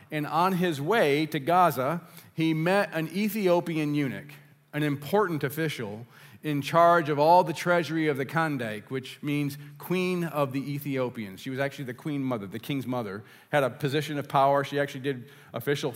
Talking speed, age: 175 wpm, 40-59